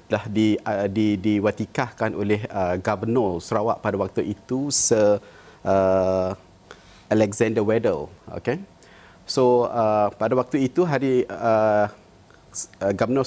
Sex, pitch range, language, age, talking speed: male, 105-130 Hz, Malay, 30-49, 110 wpm